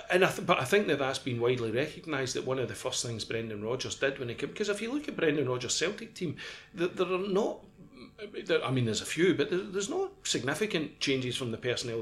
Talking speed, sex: 255 wpm, male